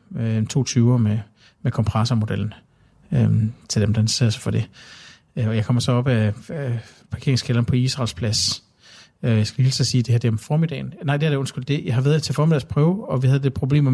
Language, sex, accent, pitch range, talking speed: Danish, male, native, 115-140 Hz, 235 wpm